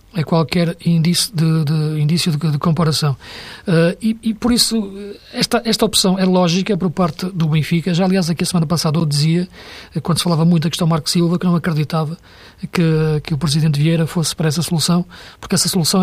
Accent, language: Portuguese, Portuguese